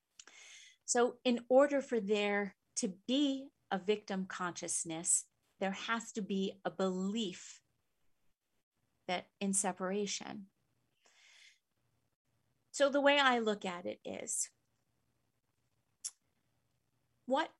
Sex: female